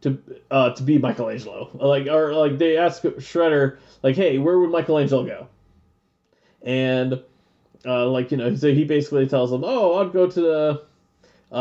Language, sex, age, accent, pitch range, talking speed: English, male, 20-39, American, 140-235 Hz, 165 wpm